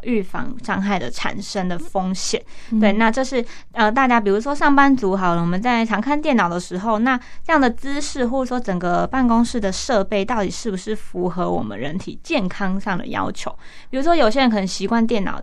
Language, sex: Chinese, female